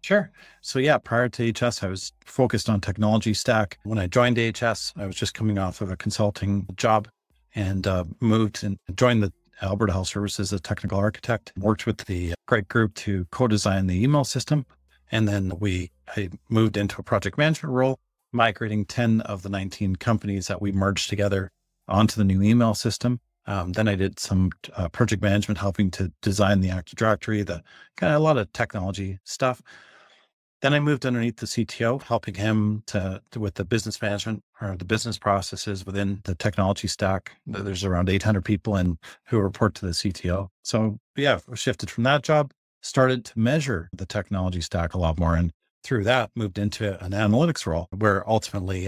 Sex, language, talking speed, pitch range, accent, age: male, English, 185 wpm, 95-115 Hz, American, 40-59